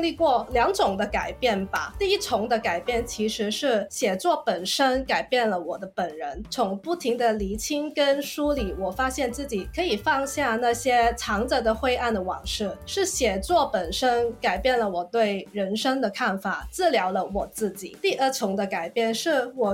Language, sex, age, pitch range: Chinese, female, 20-39, 200-275 Hz